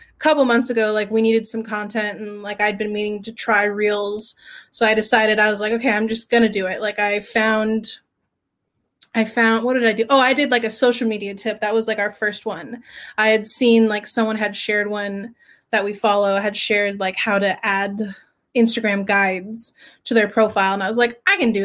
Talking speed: 220 wpm